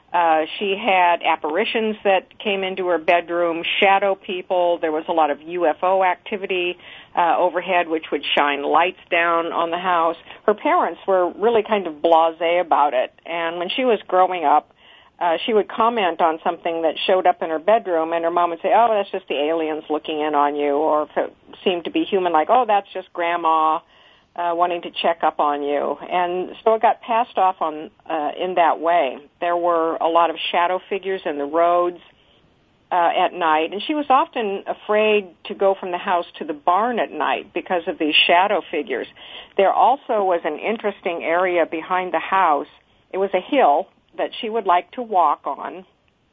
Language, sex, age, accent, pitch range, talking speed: English, female, 50-69, American, 165-195 Hz, 195 wpm